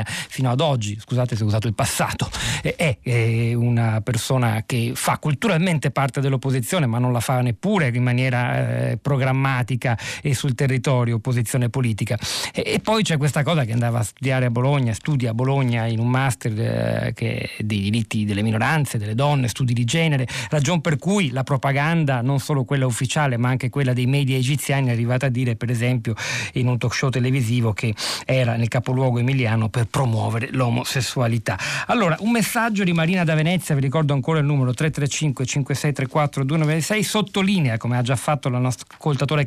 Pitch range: 120-145 Hz